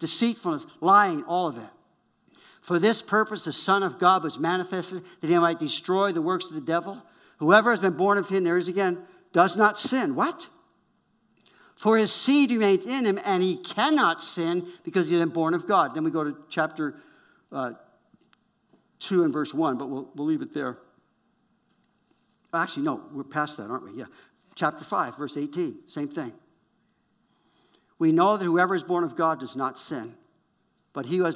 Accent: American